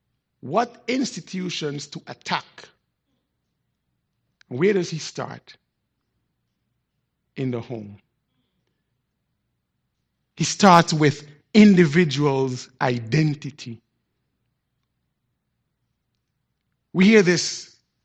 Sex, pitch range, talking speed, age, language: male, 130-195 Hz, 65 wpm, 60-79, English